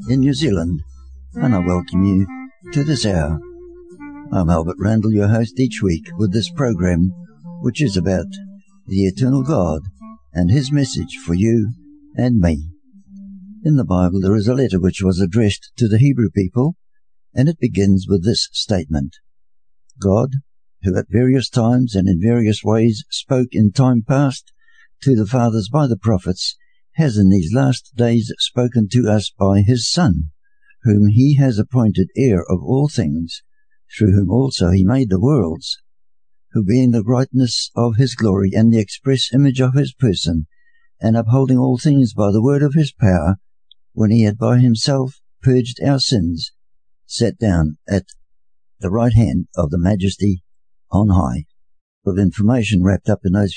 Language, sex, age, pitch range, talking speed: English, male, 60-79, 95-135 Hz, 165 wpm